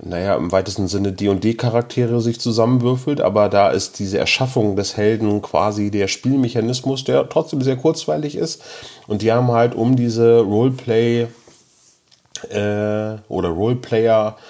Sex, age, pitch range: male, 30-49, 100-120 Hz